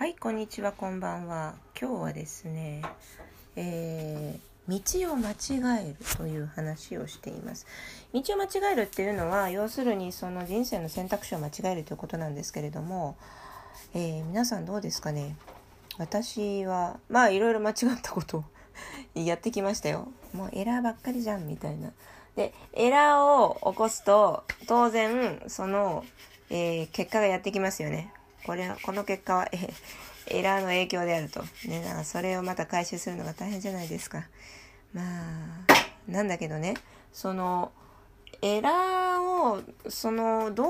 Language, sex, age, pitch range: Japanese, female, 20-39, 160-220 Hz